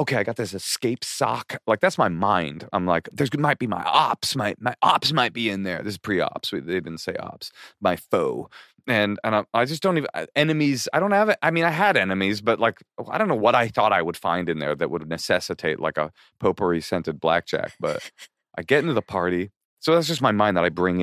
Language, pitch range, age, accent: English, 95-140 Hz, 30-49, American